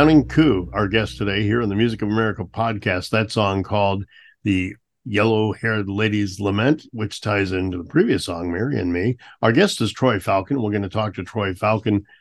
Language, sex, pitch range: English, male, 100-120 Hz